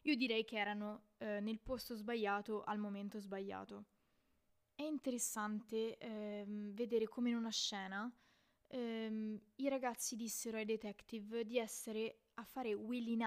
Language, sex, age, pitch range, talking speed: Italian, female, 20-39, 210-240 Hz, 135 wpm